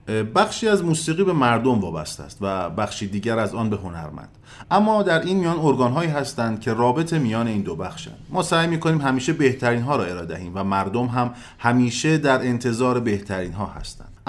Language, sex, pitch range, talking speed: Persian, male, 105-145 Hz, 175 wpm